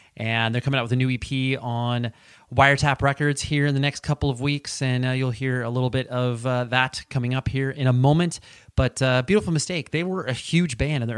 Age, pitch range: 30-49, 115-145 Hz